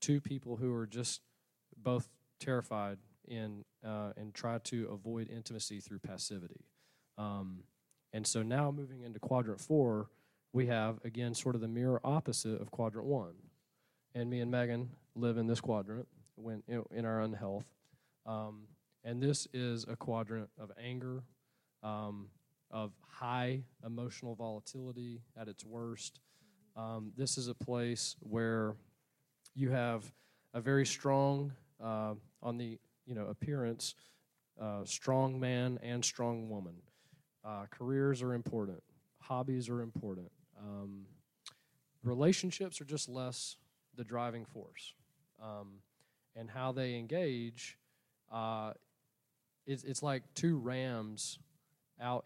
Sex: male